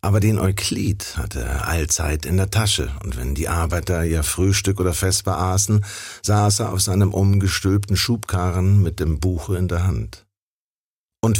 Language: German